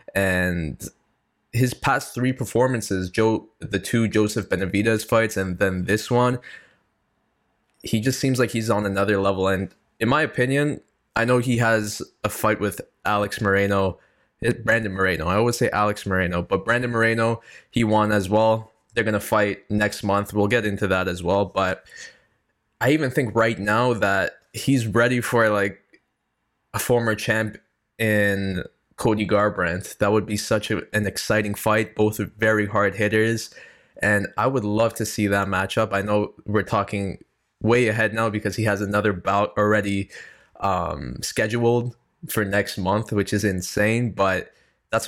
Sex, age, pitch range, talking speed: male, 10-29, 100-115 Hz, 165 wpm